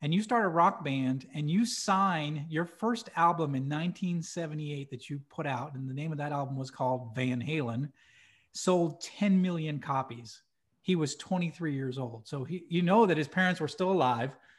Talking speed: 190 wpm